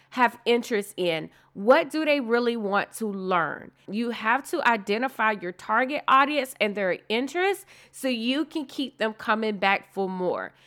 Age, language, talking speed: 30-49, English, 165 wpm